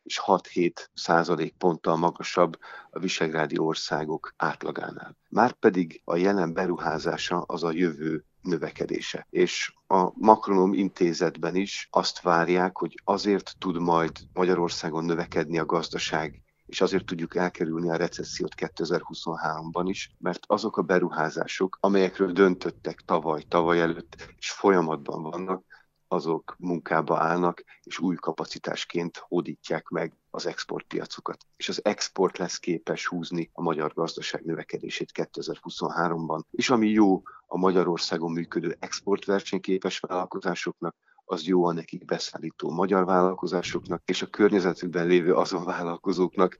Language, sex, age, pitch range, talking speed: Hungarian, male, 50-69, 85-95 Hz, 120 wpm